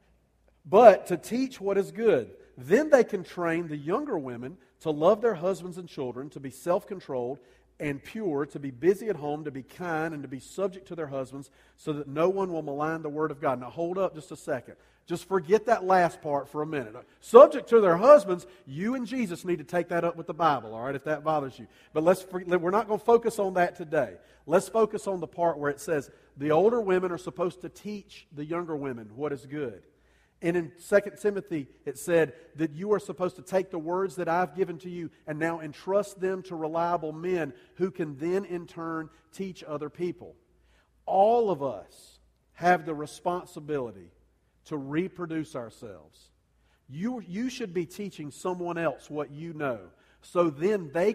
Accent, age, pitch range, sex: American, 40-59, 150-185 Hz, male